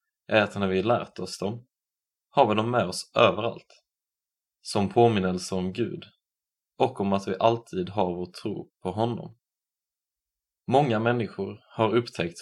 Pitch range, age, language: 90-115 Hz, 20-39, Swedish